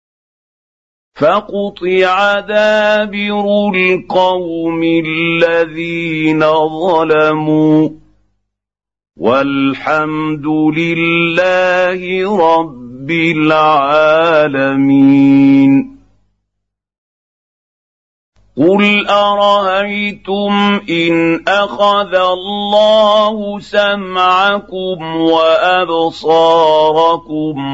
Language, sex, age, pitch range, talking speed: Arabic, male, 50-69, 155-185 Hz, 35 wpm